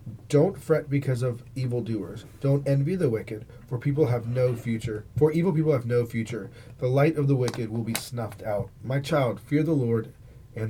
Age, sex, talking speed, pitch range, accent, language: 30-49, male, 195 wpm, 115-140 Hz, American, English